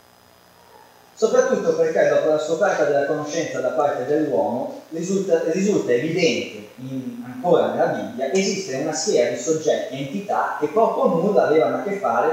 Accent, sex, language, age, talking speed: native, male, Italian, 20-39, 160 wpm